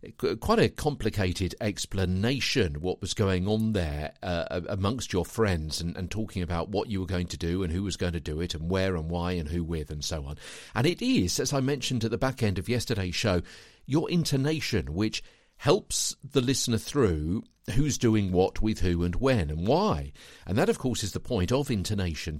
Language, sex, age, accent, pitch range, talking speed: English, male, 50-69, British, 85-130 Hz, 210 wpm